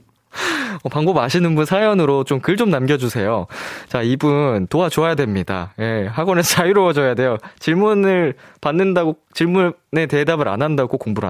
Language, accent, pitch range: Korean, native, 105-155 Hz